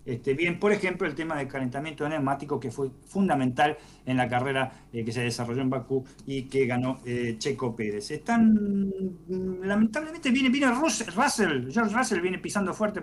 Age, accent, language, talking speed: 50-69, Argentinian, Spanish, 165 wpm